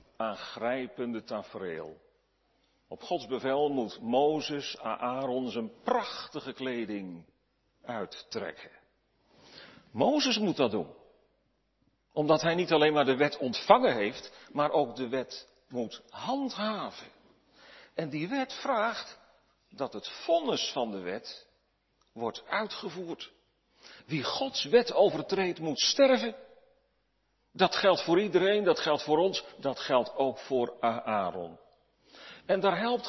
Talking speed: 120 wpm